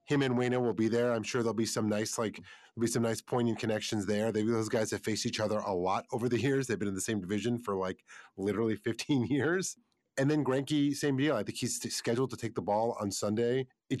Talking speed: 255 wpm